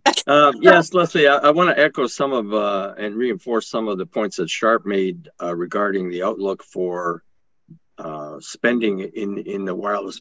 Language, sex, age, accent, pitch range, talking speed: English, male, 50-69, American, 95-115 Hz, 180 wpm